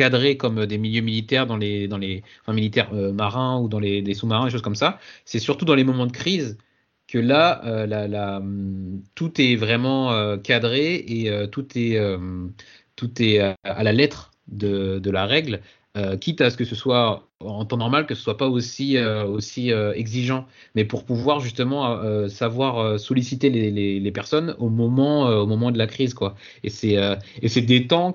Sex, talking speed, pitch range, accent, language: male, 215 wpm, 100-125 Hz, French, French